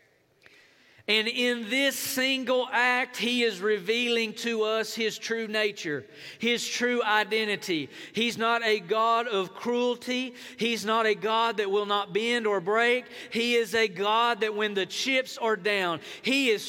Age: 40-59